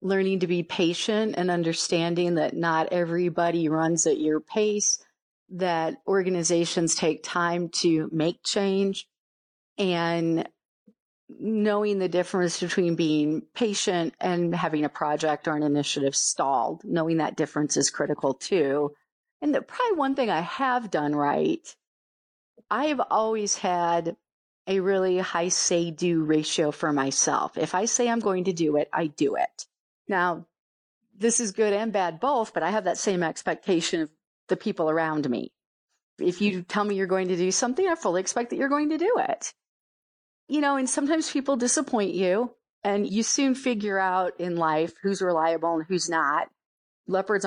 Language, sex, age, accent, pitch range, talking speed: English, female, 40-59, American, 160-205 Hz, 160 wpm